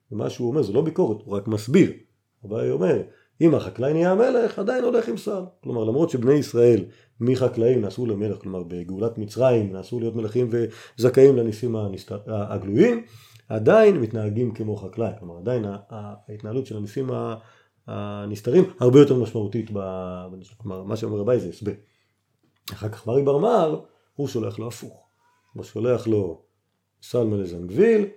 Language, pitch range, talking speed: Hebrew, 100-130 Hz, 145 wpm